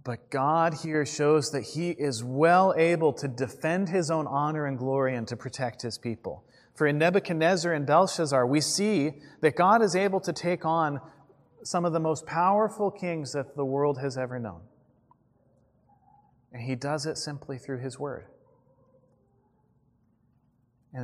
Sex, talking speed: male, 160 wpm